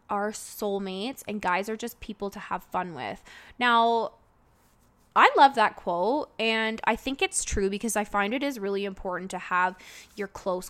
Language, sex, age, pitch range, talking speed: English, female, 20-39, 205-240 Hz, 180 wpm